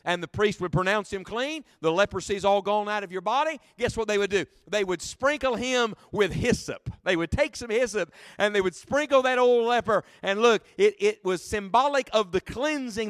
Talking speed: 215 wpm